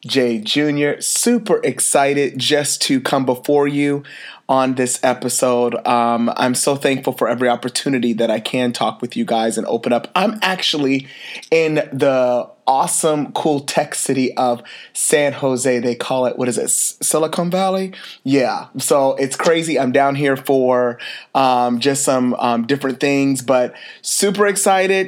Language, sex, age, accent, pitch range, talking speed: English, male, 30-49, American, 125-145 Hz, 155 wpm